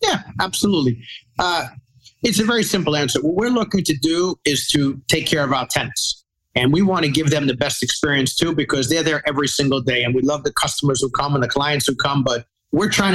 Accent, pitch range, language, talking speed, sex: American, 135-160 Hz, English, 235 wpm, male